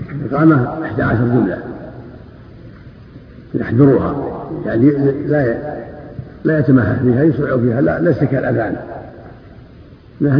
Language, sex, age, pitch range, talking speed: Arabic, male, 50-69, 115-140 Hz, 105 wpm